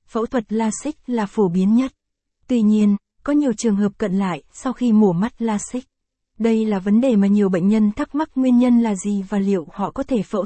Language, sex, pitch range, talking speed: Vietnamese, female, 205-245 Hz, 230 wpm